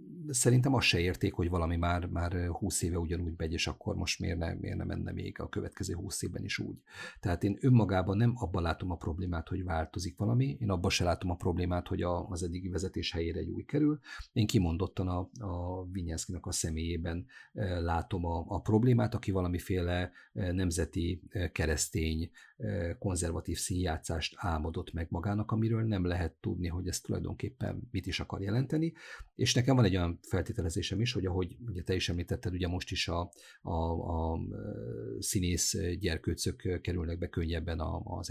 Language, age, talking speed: Hungarian, 50-69, 170 wpm